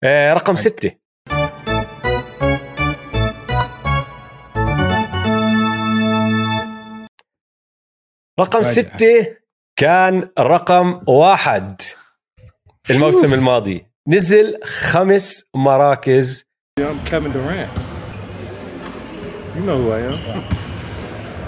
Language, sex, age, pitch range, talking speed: Arabic, male, 30-49, 110-170 Hz, 40 wpm